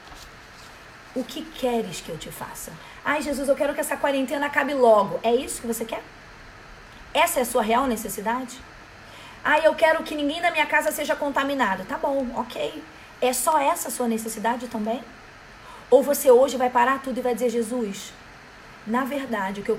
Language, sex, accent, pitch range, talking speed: Portuguese, female, Brazilian, 205-255 Hz, 190 wpm